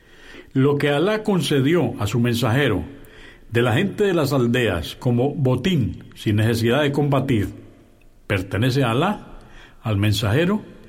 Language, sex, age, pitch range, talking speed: Spanish, male, 60-79, 115-150 Hz, 130 wpm